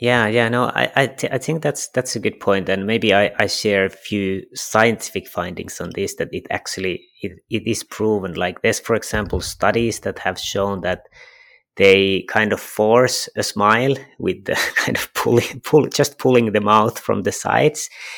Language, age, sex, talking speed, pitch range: English, 30-49, male, 195 wpm, 100-115 Hz